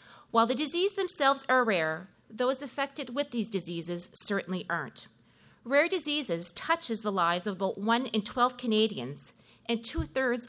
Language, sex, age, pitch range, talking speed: English, female, 40-59, 185-245 Hz, 150 wpm